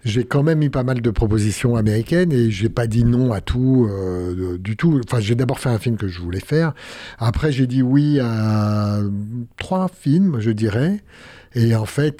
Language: French